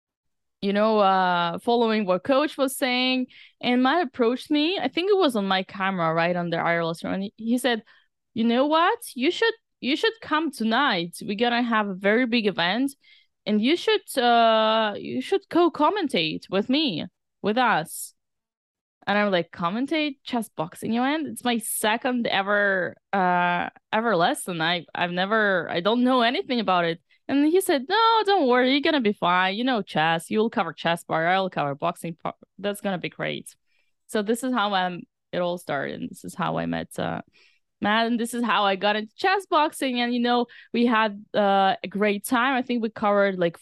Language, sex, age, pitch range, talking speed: English, female, 10-29, 180-255 Hz, 195 wpm